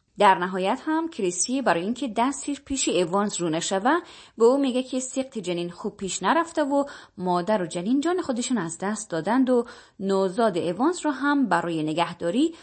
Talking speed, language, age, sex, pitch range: 170 wpm, Persian, 20-39, female, 180-270 Hz